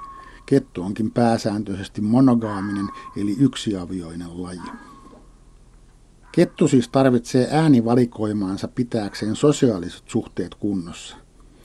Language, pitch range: Finnish, 100-125 Hz